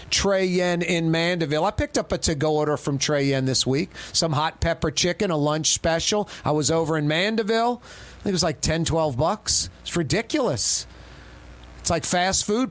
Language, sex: English, male